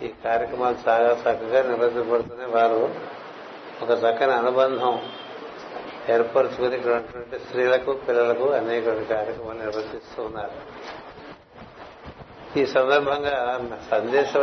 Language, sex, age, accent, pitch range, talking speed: Telugu, male, 60-79, native, 120-140 Hz, 80 wpm